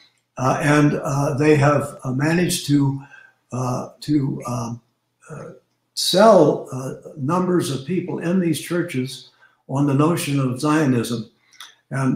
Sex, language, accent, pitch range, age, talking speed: male, English, American, 130-160 Hz, 60-79, 130 wpm